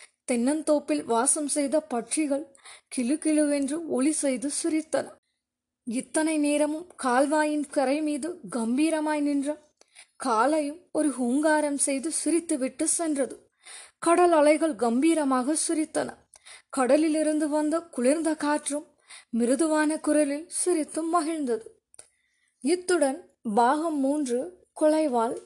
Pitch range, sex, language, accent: 265-335 Hz, female, Tamil, native